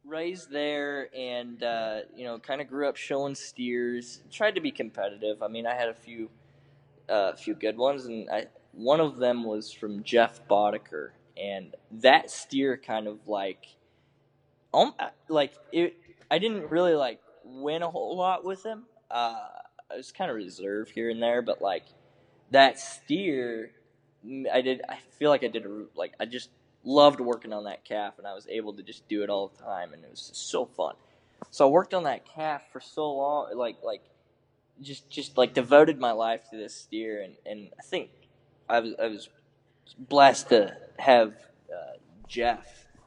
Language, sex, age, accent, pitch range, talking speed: English, male, 10-29, American, 115-150 Hz, 185 wpm